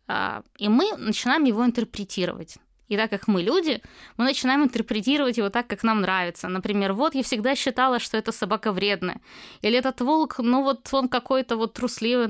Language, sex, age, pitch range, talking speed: Ukrainian, female, 20-39, 195-250 Hz, 175 wpm